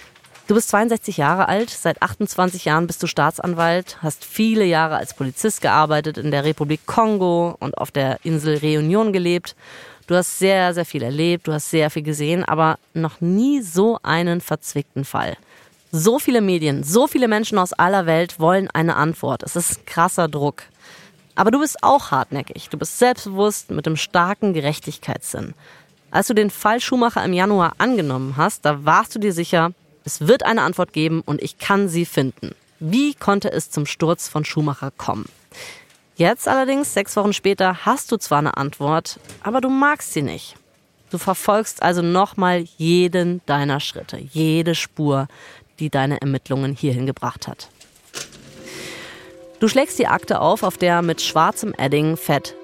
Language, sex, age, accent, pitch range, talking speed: German, female, 30-49, German, 150-200 Hz, 165 wpm